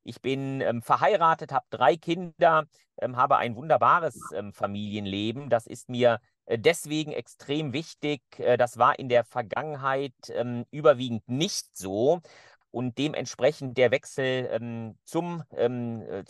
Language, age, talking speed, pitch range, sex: German, 40-59, 135 wpm, 125-160 Hz, male